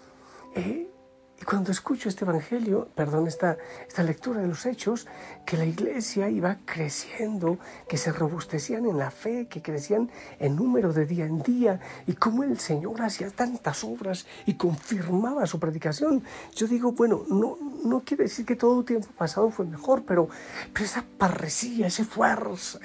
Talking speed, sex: 165 wpm, male